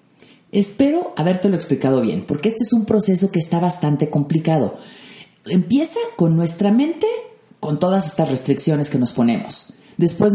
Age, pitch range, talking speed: 40-59, 155-215 Hz, 150 wpm